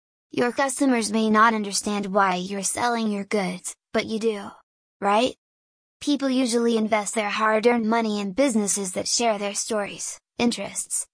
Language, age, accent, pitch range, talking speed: English, 10-29, American, 205-235 Hz, 145 wpm